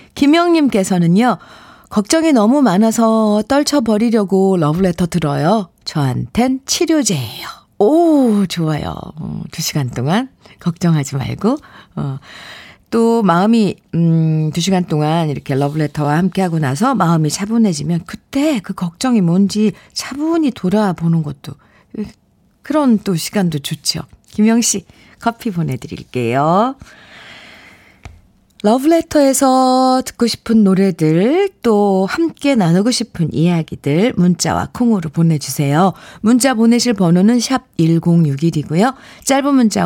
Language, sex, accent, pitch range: Korean, female, native, 160-230 Hz